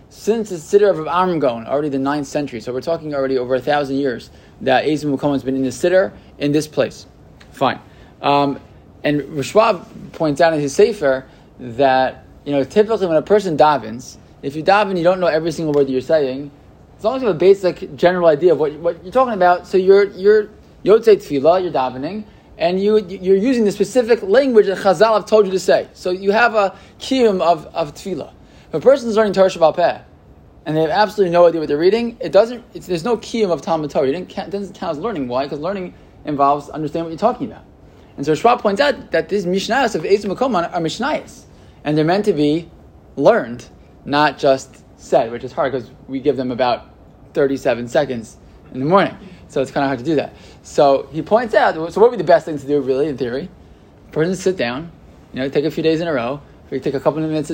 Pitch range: 140-200 Hz